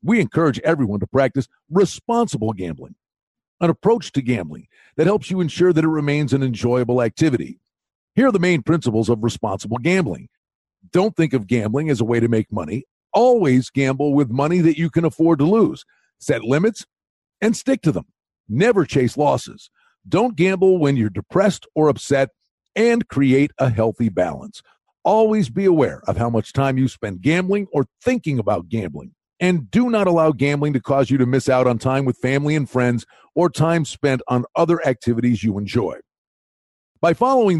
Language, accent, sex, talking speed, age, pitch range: English, American, male, 175 wpm, 50-69, 120-180 Hz